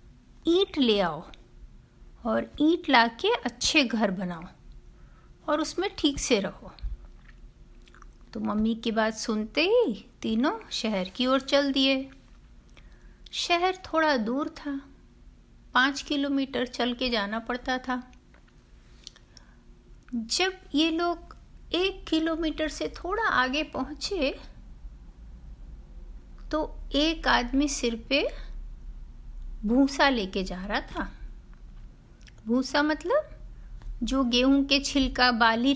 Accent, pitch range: native, 230-305 Hz